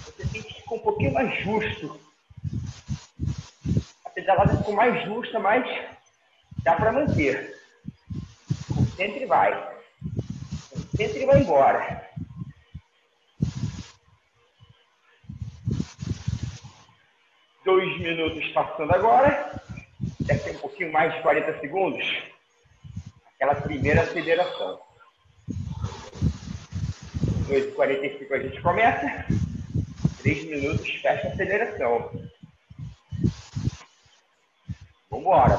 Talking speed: 75 wpm